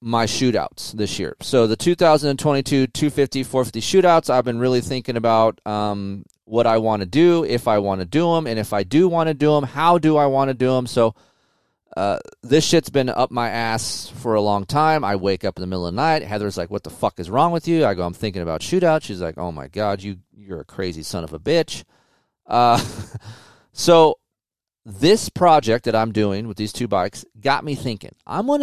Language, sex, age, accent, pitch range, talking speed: English, male, 30-49, American, 110-150 Hz, 225 wpm